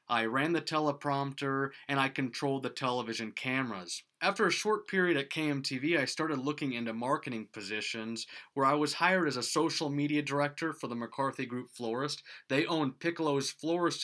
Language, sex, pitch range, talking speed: English, male, 120-155 Hz, 170 wpm